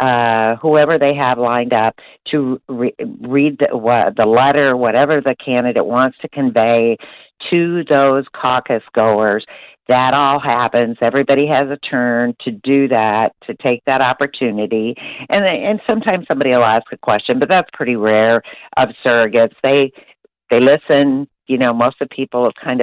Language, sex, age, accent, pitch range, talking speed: English, female, 50-69, American, 120-145 Hz, 165 wpm